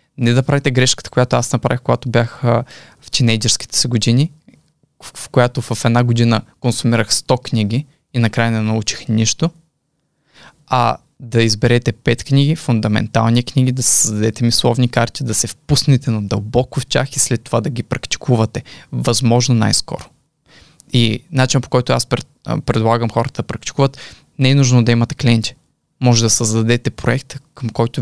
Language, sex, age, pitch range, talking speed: Bulgarian, male, 20-39, 115-135 Hz, 155 wpm